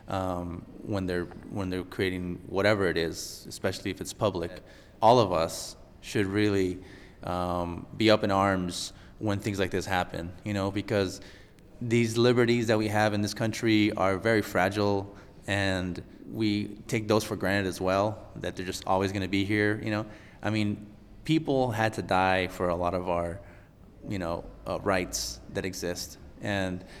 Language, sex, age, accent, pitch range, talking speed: English, male, 20-39, American, 90-105 Hz, 170 wpm